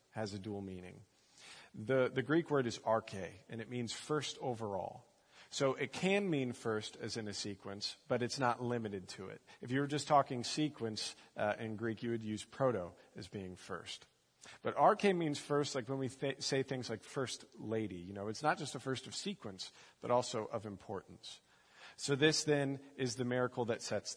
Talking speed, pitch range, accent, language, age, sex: 200 wpm, 105-130 Hz, American, English, 40-59, male